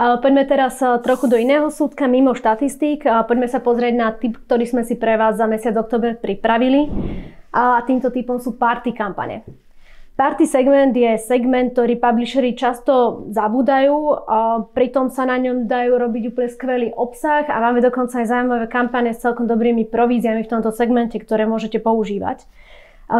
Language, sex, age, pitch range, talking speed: Slovak, female, 20-39, 225-255 Hz, 165 wpm